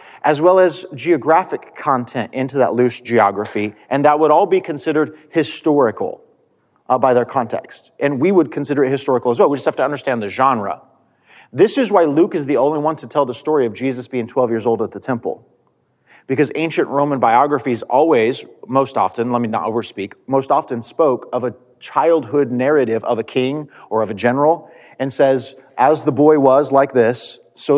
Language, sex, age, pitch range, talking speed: English, male, 30-49, 115-150 Hz, 195 wpm